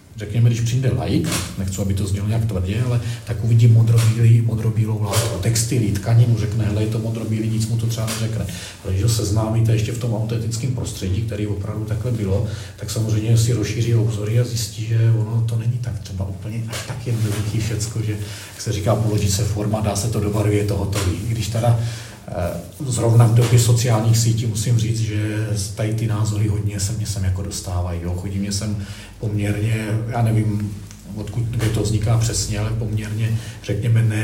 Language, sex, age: Czech, male, 40-59